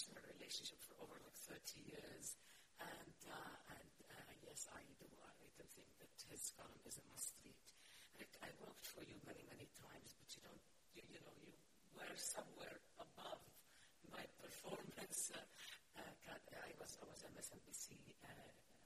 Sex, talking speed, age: female, 160 wpm, 60-79